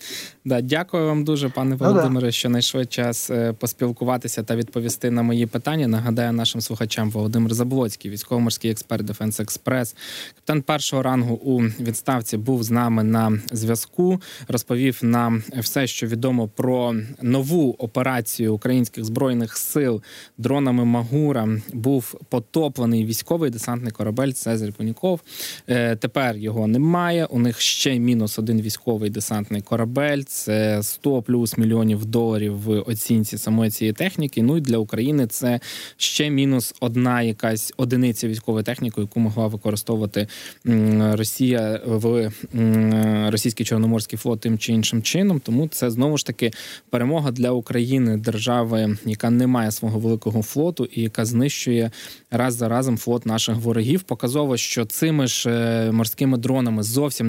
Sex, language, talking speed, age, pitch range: male, Ukrainian, 135 wpm, 20-39, 110-130 Hz